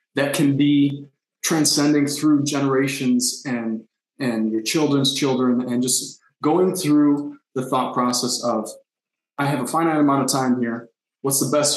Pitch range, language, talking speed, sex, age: 115-135 Hz, English, 155 wpm, male, 20-39